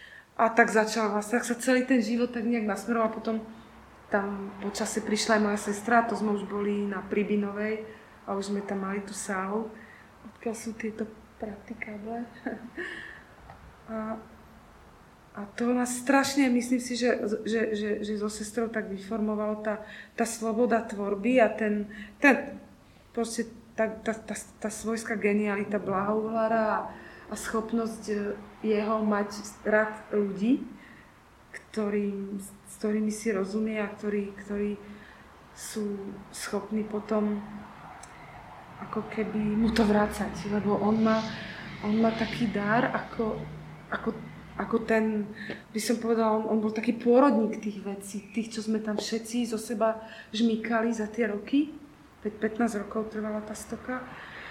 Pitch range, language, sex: 210-225 Hz, Slovak, female